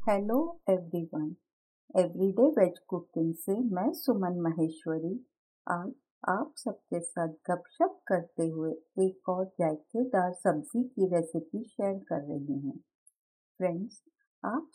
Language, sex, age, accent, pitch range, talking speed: Hindi, female, 50-69, native, 170-245 Hz, 115 wpm